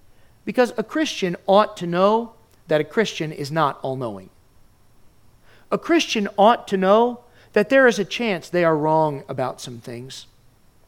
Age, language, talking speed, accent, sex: 40-59, English, 155 wpm, American, male